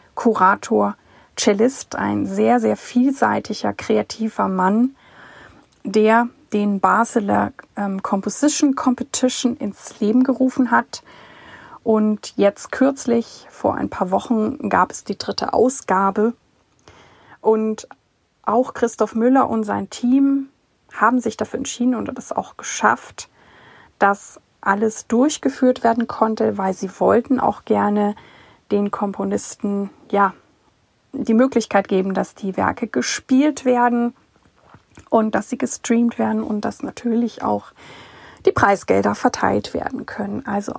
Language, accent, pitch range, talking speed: German, German, 215-255 Hz, 120 wpm